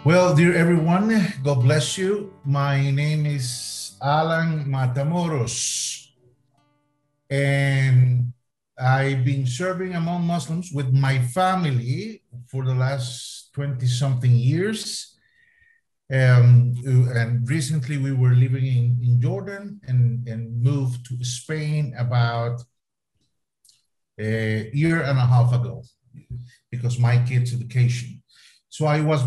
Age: 50-69